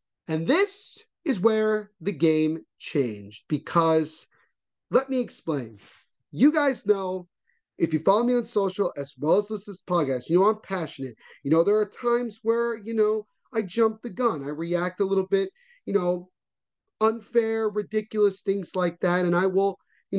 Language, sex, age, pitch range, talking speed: English, male, 30-49, 160-215 Hz, 170 wpm